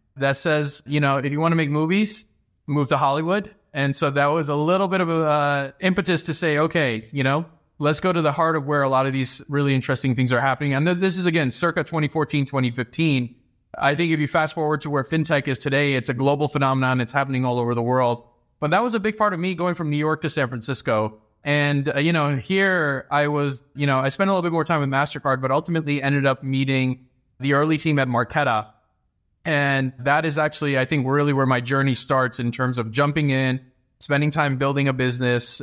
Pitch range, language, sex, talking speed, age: 125-155 Hz, English, male, 230 wpm, 20-39